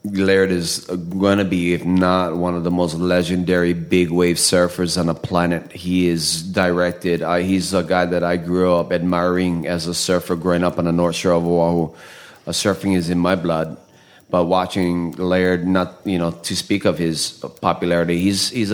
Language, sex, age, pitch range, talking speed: English, male, 30-49, 85-95 Hz, 190 wpm